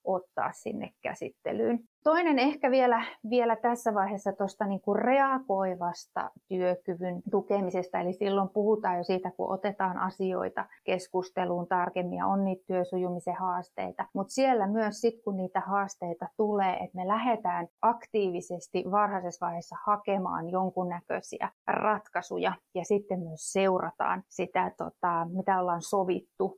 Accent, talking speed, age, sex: native, 125 wpm, 30-49, female